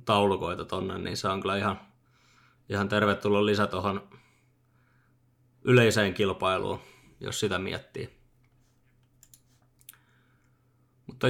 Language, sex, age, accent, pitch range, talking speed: Finnish, male, 20-39, native, 105-125 Hz, 90 wpm